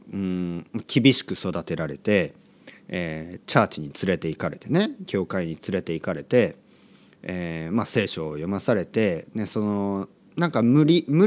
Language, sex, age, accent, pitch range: Japanese, male, 40-59, native, 95-160 Hz